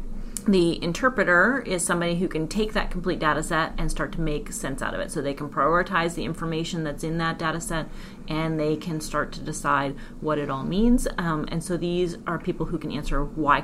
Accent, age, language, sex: American, 30-49, English, female